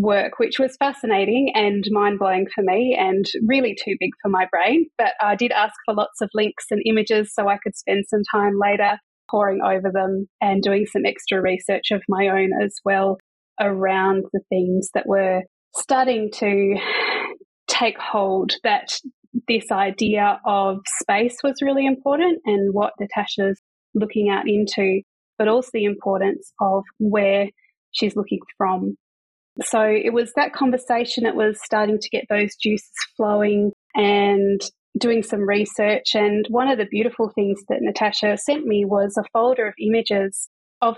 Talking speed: 165 wpm